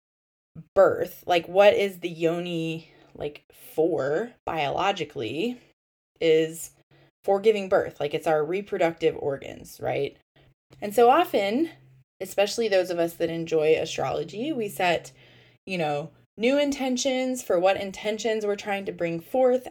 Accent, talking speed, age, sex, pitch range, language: American, 130 wpm, 20-39, female, 160-235 Hz, English